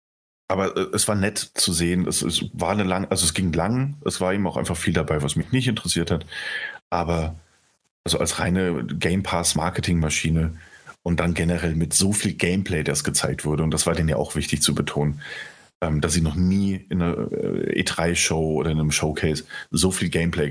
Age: 40-59